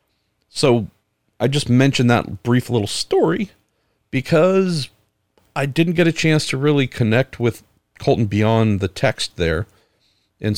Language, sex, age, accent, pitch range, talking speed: English, male, 40-59, American, 100-130 Hz, 135 wpm